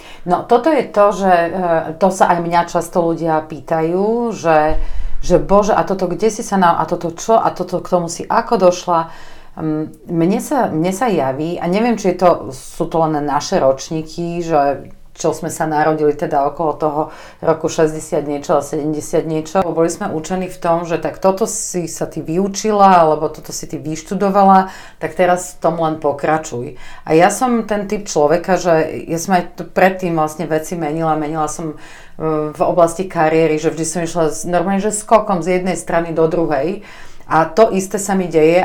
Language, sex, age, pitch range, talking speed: Slovak, female, 40-59, 155-190 Hz, 185 wpm